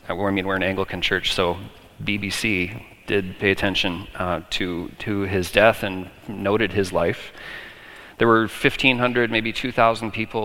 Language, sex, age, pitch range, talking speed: English, male, 30-49, 90-110 Hz, 150 wpm